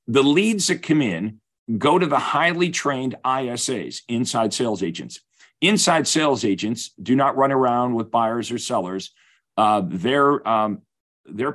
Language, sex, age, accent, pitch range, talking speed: English, male, 50-69, American, 110-150 Hz, 150 wpm